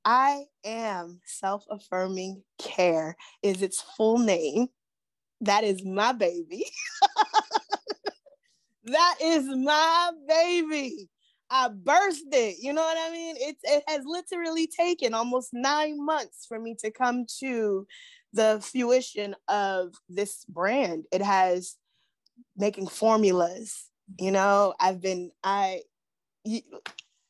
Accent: American